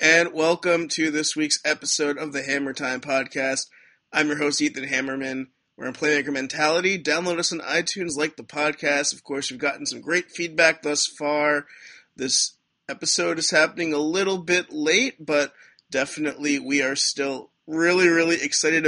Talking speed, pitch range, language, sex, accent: 165 wpm, 140-170 Hz, English, male, American